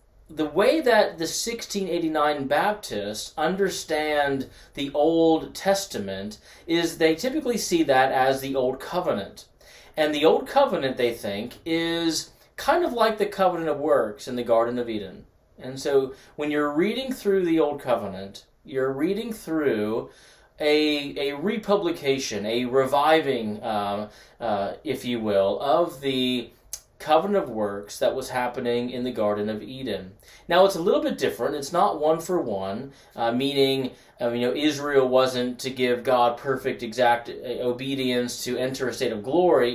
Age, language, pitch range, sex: 30-49, English, 120-160 Hz, male